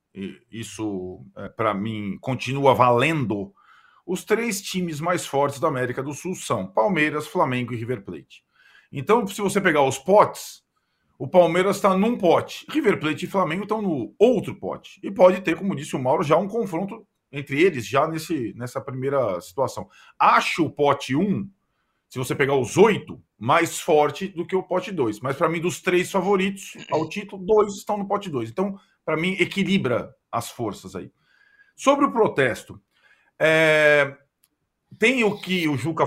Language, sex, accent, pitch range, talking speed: Portuguese, male, Brazilian, 135-195 Hz, 170 wpm